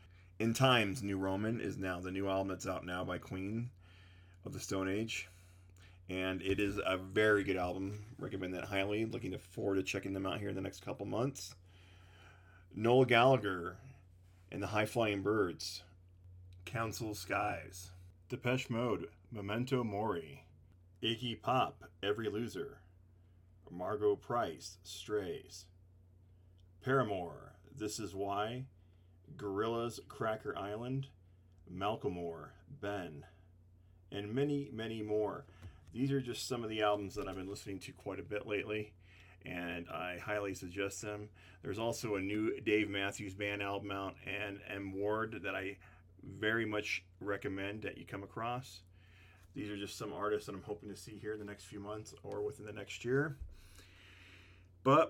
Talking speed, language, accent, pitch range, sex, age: 150 wpm, English, American, 90-110 Hz, male, 30-49